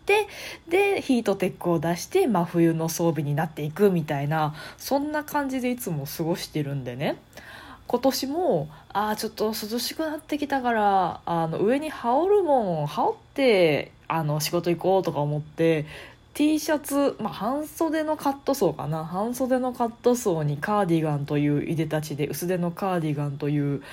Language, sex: Japanese, female